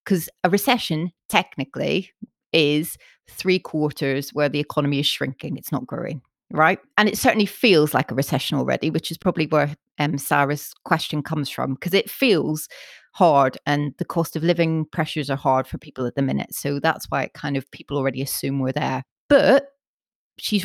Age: 30-49